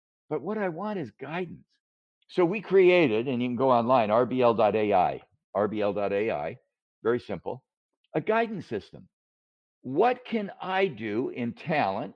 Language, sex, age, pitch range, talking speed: English, male, 60-79, 115-160 Hz, 135 wpm